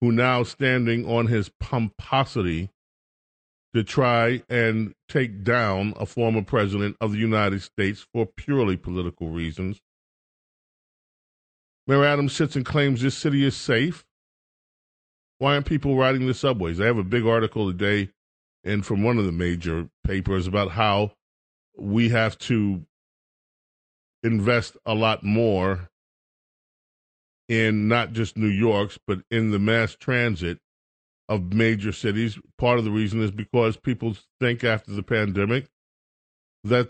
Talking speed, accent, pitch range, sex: 135 wpm, American, 100-120 Hz, male